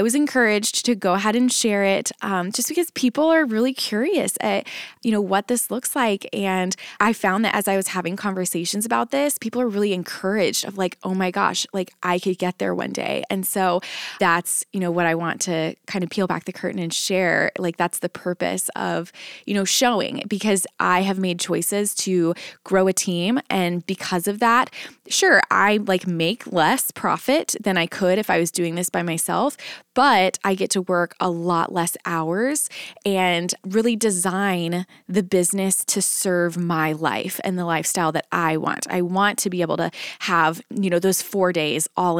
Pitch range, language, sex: 175-210 Hz, English, female